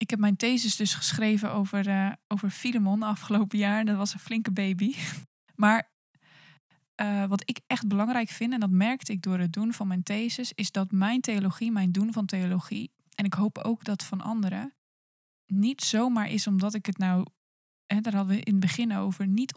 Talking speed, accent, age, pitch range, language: 200 wpm, Dutch, 20-39, 190-220 Hz, Dutch